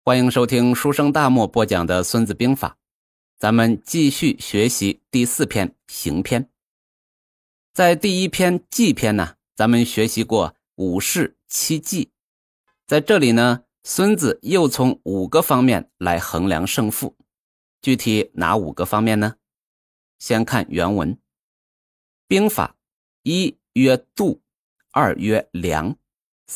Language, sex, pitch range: Chinese, male, 110-155 Hz